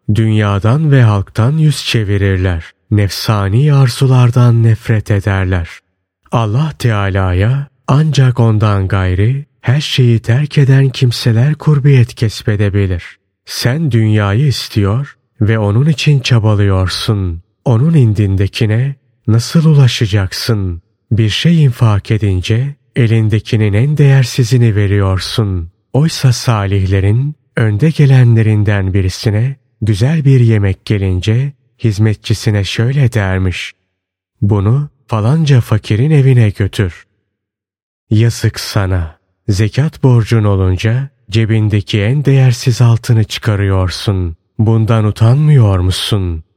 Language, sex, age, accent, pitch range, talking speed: Turkish, male, 30-49, native, 100-130 Hz, 90 wpm